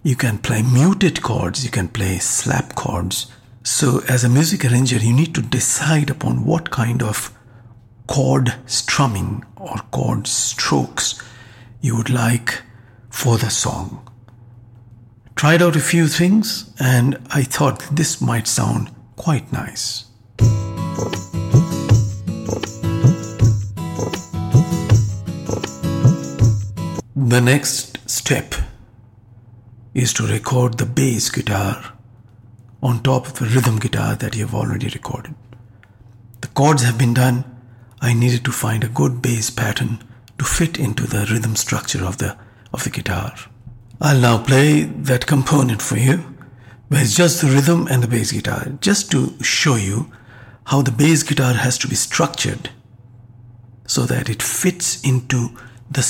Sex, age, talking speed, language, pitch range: male, 60-79, 135 wpm, English, 115-135 Hz